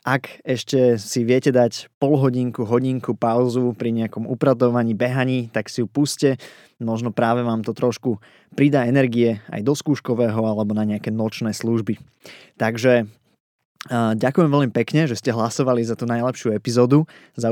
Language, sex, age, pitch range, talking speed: Slovak, male, 20-39, 115-130 Hz, 145 wpm